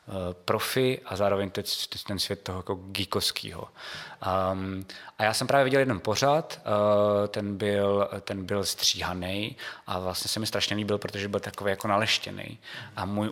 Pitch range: 100-115 Hz